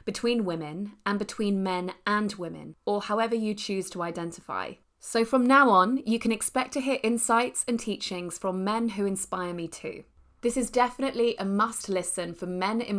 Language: English